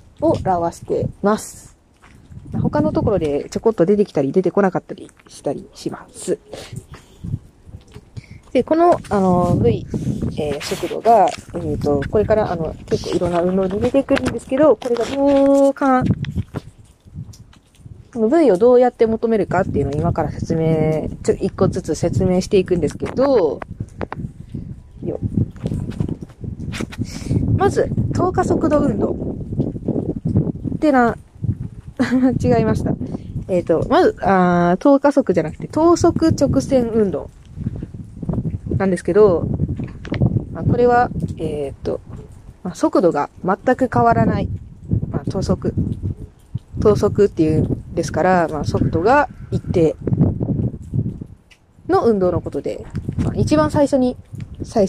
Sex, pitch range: female, 170-260 Hz